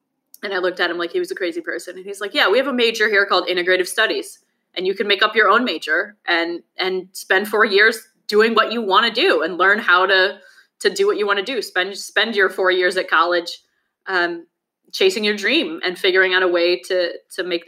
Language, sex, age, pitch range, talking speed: English, female, 20-39, 175-200 Hz, 245 wpm